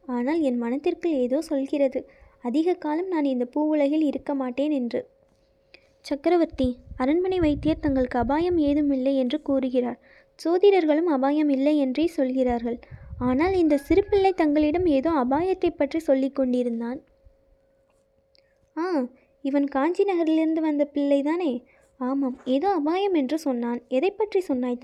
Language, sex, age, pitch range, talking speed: Tamil, female, 20-39, 265-320 Hz, 120 wpm